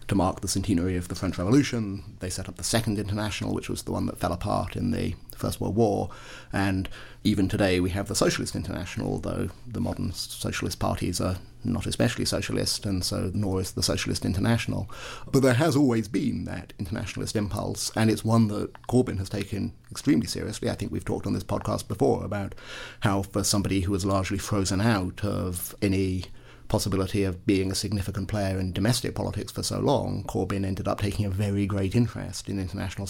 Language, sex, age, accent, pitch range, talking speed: English, male, 30-49, British, 100-120 Hz, 195 wpm